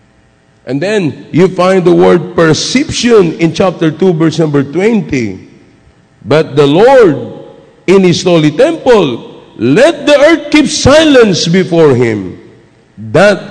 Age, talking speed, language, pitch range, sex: 50-69, 125 wpm, English, 140-195 Hz, male